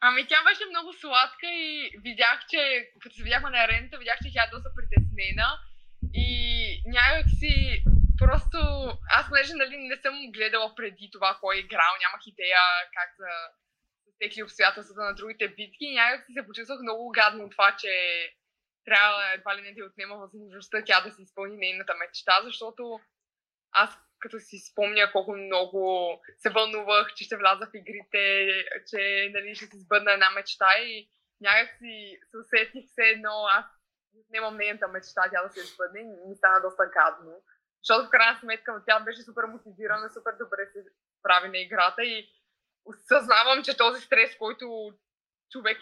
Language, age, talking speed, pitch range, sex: Bulgarian, 20-39, 170 wpm, 195-230 Hz, female